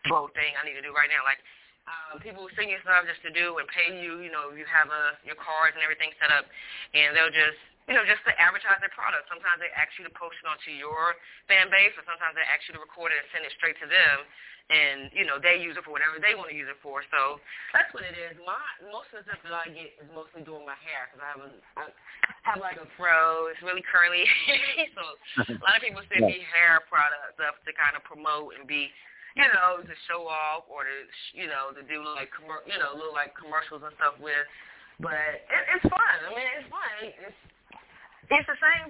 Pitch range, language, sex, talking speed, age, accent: 150-180 Hz, English, female, 240 wpm, 20-39, American